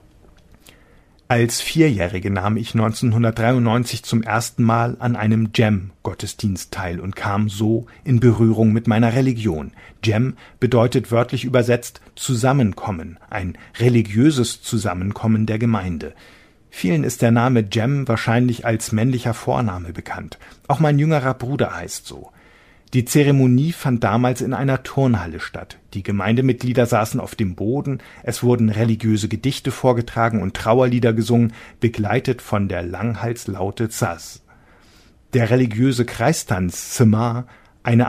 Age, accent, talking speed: 40-59, German, 120 wpm